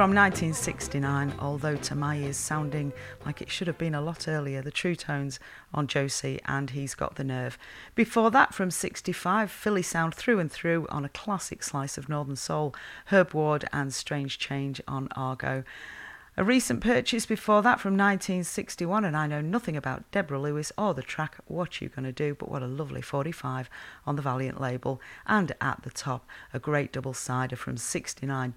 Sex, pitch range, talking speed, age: female, 135-170 Hz, 185 wpm, 40-59